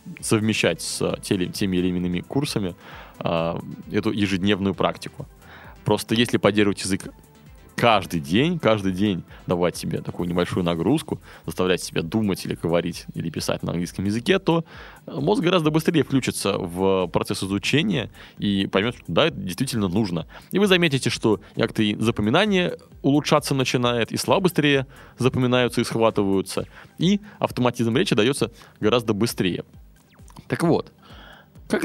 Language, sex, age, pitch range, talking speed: Russian, male, 20-39, 105-150 Hz, 135 wpm